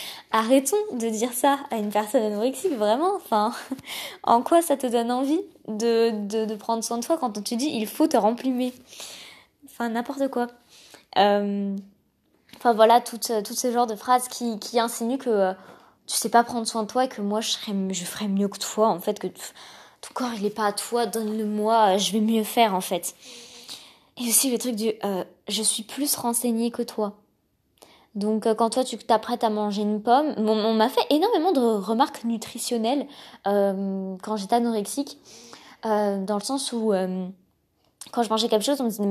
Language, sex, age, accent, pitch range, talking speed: French, female, 20-39, French, 210-255 Hz, 195 wpm